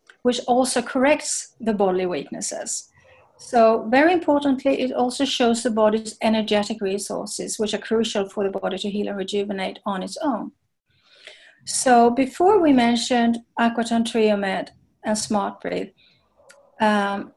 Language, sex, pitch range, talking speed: English, female, 210-260 Hz, 135 wpm